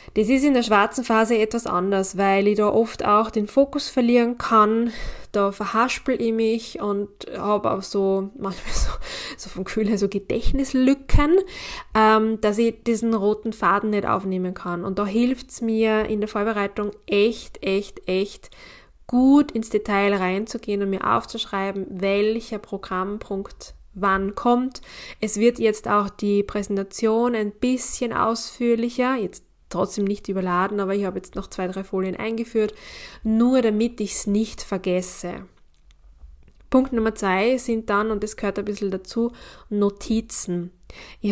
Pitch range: 200-235 Hz